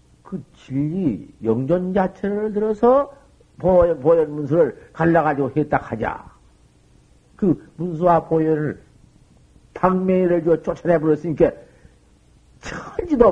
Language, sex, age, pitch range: Korean, male, 50-69, 155-215 Hz